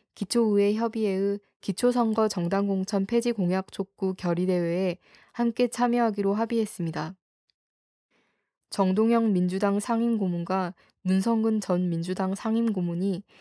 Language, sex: Korean, female